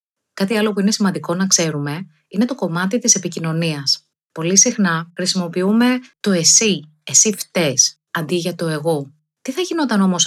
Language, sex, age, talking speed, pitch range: Greek, female, 30-49, 160 wpm, 155-205 Hz